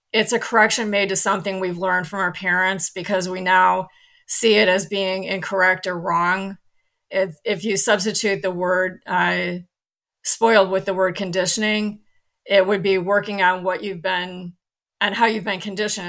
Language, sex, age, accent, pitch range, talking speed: English, female, 30-49, American, 180-205 Hz, 170 wpm